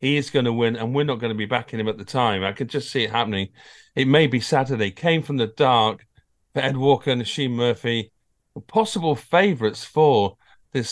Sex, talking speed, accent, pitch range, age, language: male, 220 wpm, British, 110-140 Hz, 50-69, English